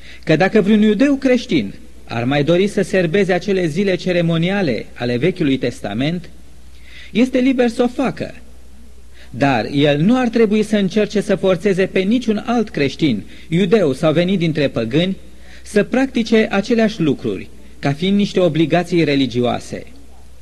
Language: Romanian